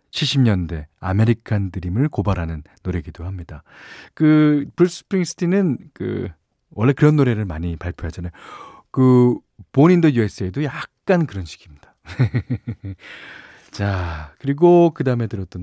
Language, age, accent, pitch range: Korean, 40-59, native, 90-150 Hz